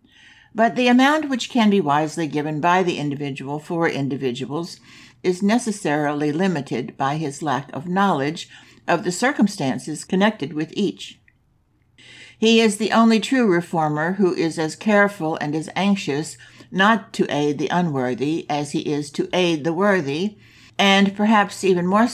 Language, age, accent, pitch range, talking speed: English, 60-79, American, 145-195 Hz, 150 wpm